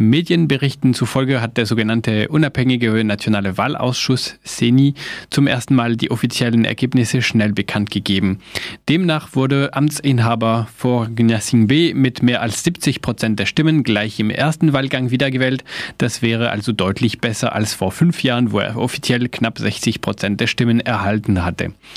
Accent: German